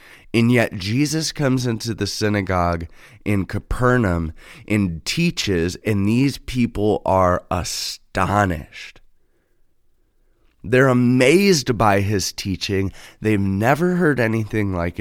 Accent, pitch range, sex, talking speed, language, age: American, 90-120 Hz, male, 105 wpm, English, 20-39